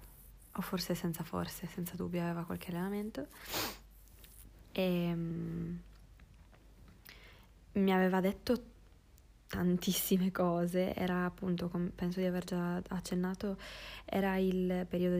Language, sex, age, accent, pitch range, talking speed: Italian, female, 20-39, native, 170-180 Hz, 105 wpm